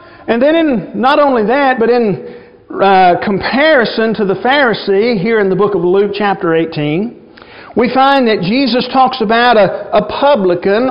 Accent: American